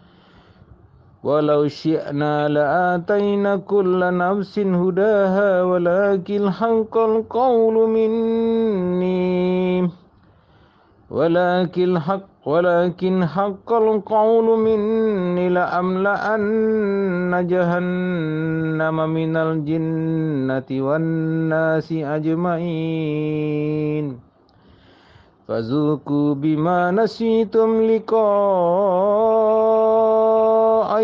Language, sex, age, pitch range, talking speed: Indonesian, male, 50-69, 170-220 Hz, 35 wpm